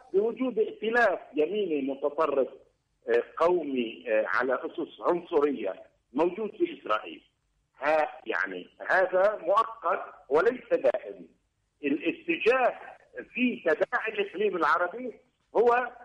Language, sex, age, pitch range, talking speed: Arabic, male, 50-69, 195-265 Hz, 85 wpm